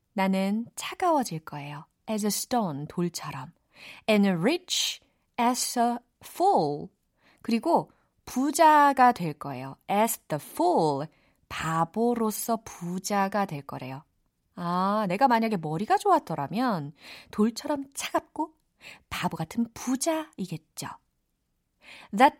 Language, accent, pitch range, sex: Korean, native, 160-230 Hz, female